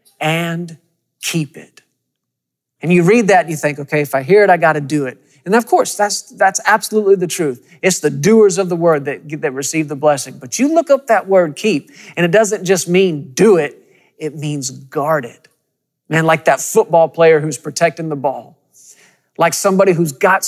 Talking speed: 210 wpm